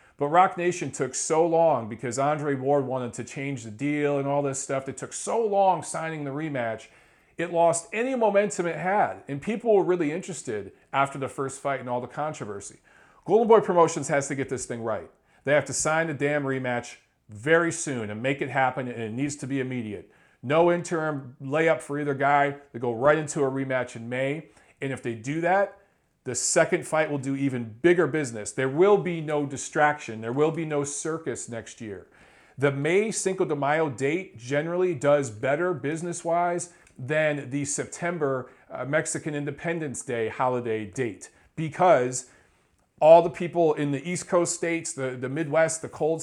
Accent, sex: American, male